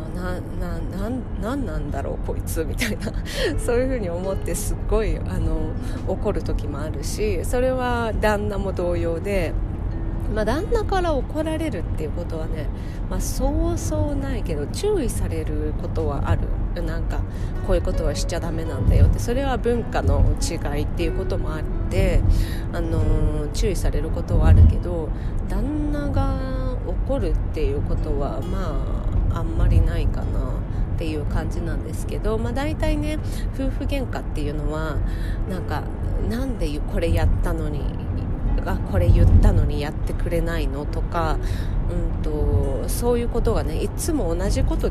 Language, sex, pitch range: Japanese, female, 85-100 Hz